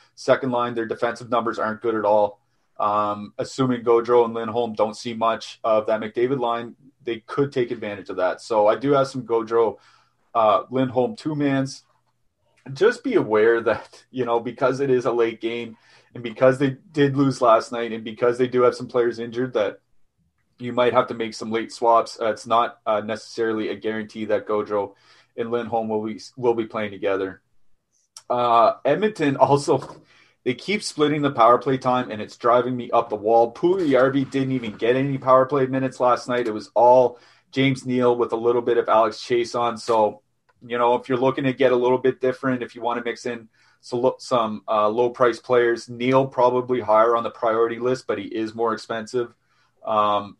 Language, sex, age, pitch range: English, male, 30-49, 115-130 Hz